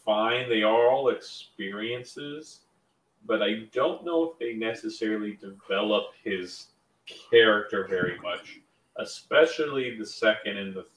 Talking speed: 120 wpm